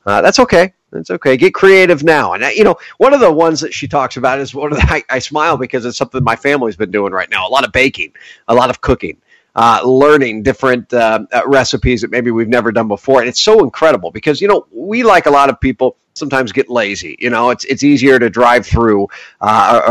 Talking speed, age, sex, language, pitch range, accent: 240 wpm, 40-59, male, English, 110-140 Hz, American